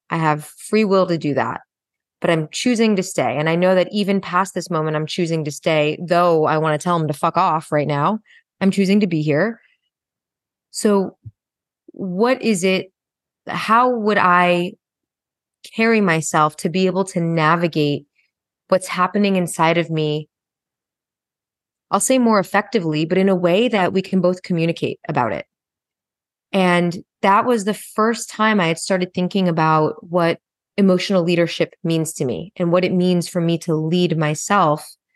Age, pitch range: 20-39, 160-195 Hz